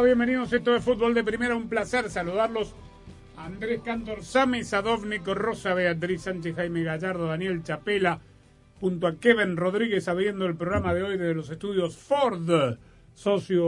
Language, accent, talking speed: Spanish, Argentinian, 160 wpm